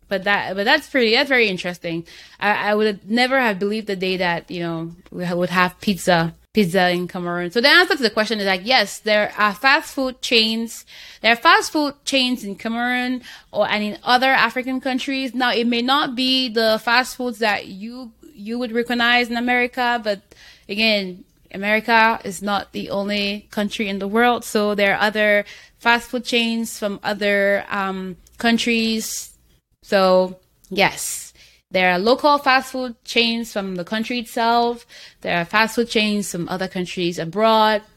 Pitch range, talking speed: 190-240 Hz, 175 wpm